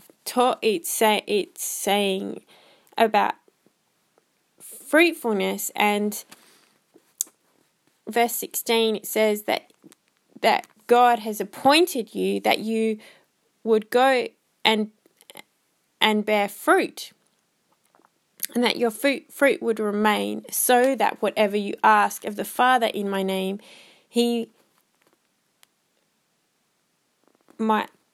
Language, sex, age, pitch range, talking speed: English, female, 20-39, 215-250 Hz, 95 wpm